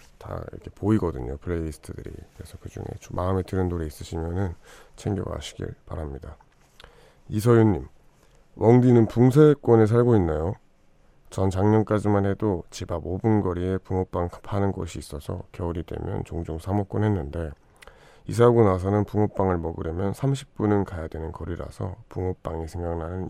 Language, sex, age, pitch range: Korean, male, 40-59, 85-110 Hz